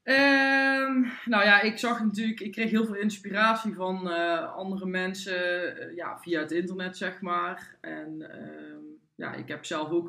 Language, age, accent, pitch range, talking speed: Dutch, 20-39, Dutch, 160-200 Hz, 170 wpm